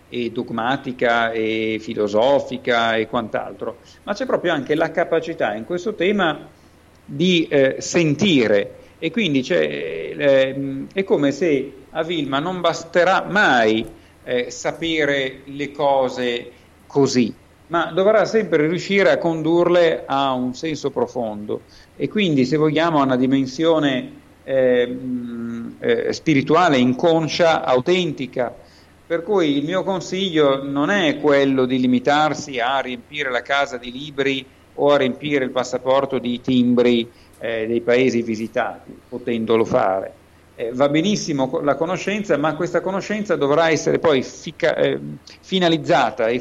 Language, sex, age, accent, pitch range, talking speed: Italian, male, 50-69, native, 120-165 Hz, 130 wpm